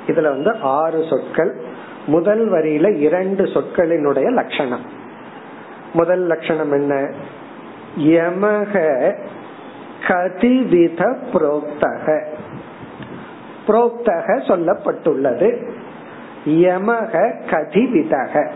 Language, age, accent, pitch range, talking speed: Tamil, 50-69, native, 170-225 Hz, 40 wpm